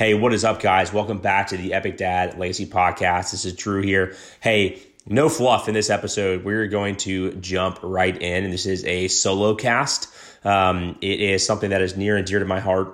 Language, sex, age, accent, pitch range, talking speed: English, male, 30-49, American, 90-105 Hz, 220 wpm